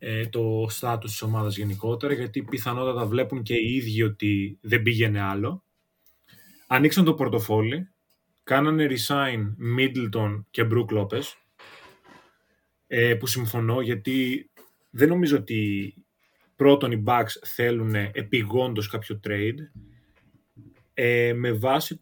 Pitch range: 110-140 Hz